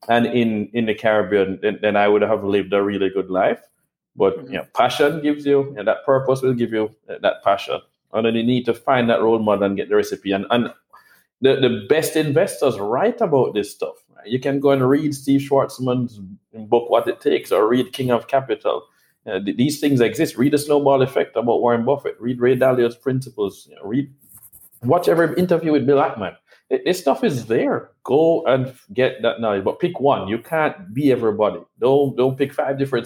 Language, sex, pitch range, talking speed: English, male, 105-140 Hz, 205 wpm